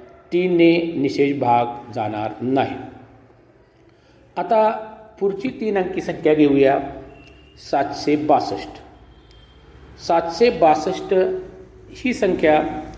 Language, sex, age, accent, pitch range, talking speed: Marathi, male, 50-69, native, 130-185 Hz, 55 wpm